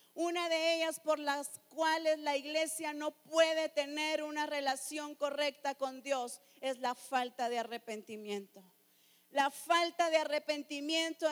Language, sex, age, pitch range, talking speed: English, female, 40-59, 240-305 Hz, 135 wpm